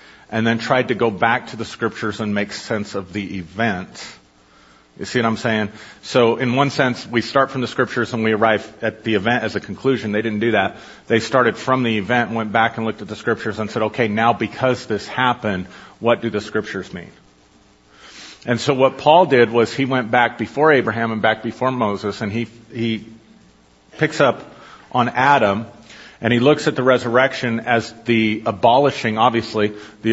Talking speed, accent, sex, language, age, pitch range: 200 wpm, American, male, English, 40-59, 105-125 Hz